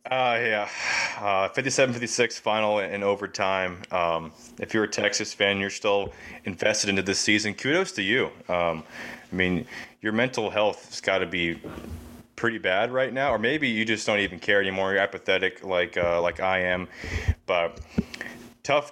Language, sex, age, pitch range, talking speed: English, male, 20-39, 95-120 Hz, 170 wpm